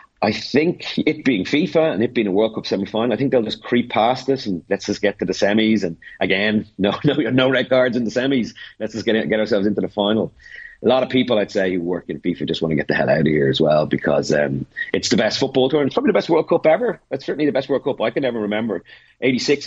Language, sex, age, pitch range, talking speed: English, male, 30-49, 90-120 Hz, 275 wpm